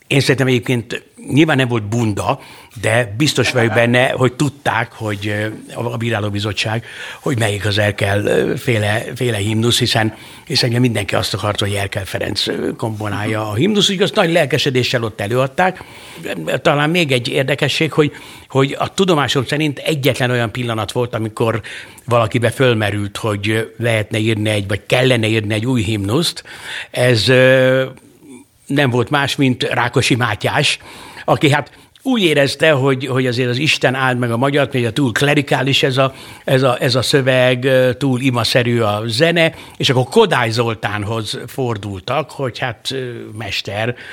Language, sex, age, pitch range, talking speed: Hungarian, male, 60-79, 110-135 Hz, 150 wpm